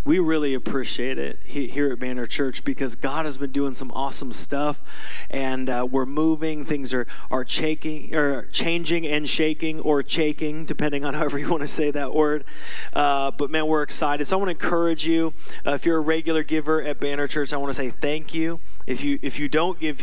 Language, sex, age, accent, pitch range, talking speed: English, male, 20-39, American, 130-155 Hz, 215 wpm